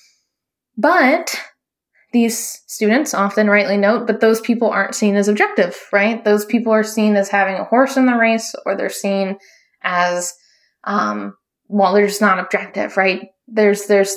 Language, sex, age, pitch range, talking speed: English, female, 20-39, 190-235 Hz, 160 wpm